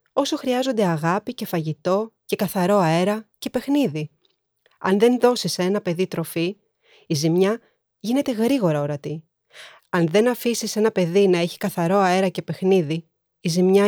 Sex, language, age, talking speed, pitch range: female, Greek, 30-49, 145 wpm, 165-220 Hz